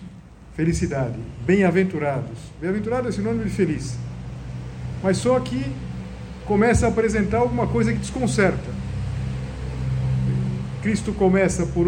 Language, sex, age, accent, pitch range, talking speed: Portuguese, male, 50-69, Brazilian, 135-195 Hz, 100 wpm